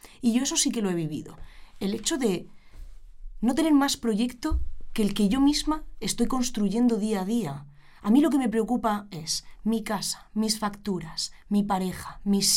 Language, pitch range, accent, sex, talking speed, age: Spanish, 165-225 Hz, Spanish, female, 185 wpm, 20-39